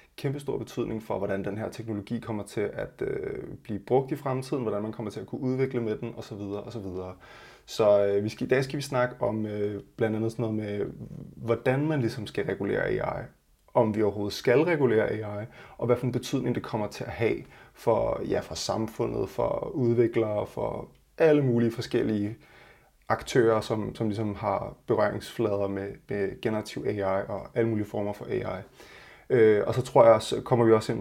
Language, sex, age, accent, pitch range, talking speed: Danish, male, 20-39, native, 105-125 Hz, 200 wpm